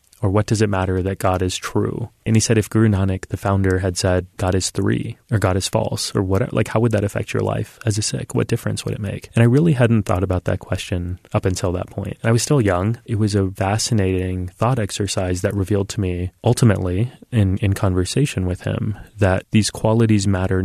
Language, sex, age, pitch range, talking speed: English, male, 30-49, 95-110 Hz, 230 wpm